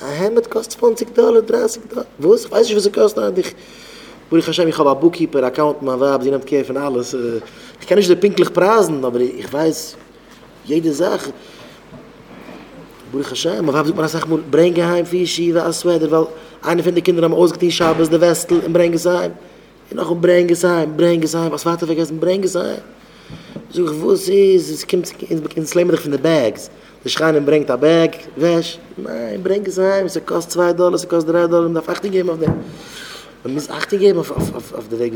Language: English